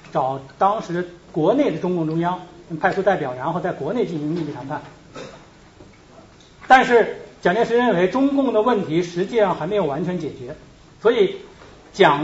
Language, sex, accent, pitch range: Chinese, male, native, 160-230 Hz